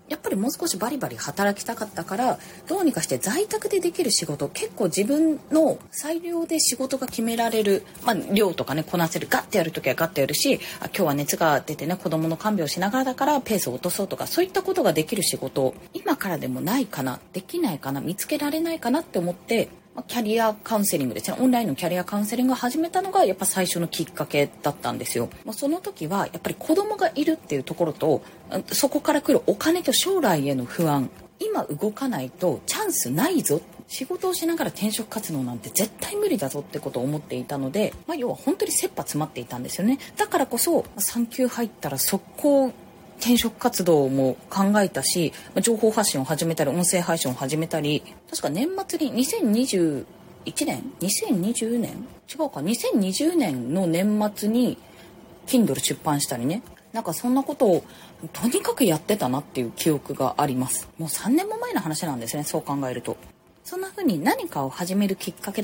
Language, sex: Japanese, female